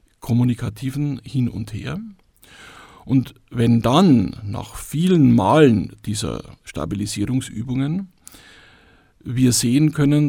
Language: German